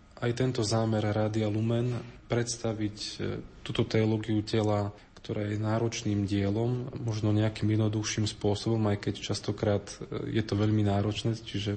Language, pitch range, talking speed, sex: Slovak, 105-115 Hz, 125 wpm, male